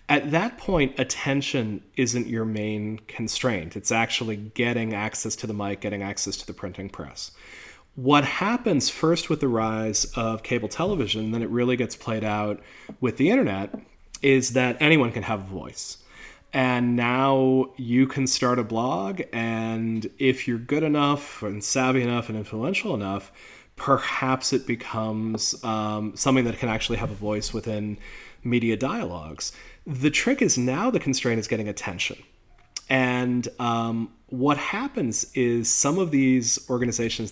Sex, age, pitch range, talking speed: male, 30-49, 110-130 Hz, 155 wpm